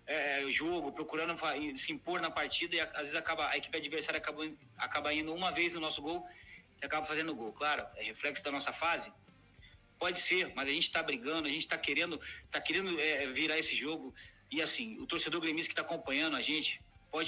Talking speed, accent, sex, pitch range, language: 210 wpm, Brazilian, male, 145-170 Hz, Portuguese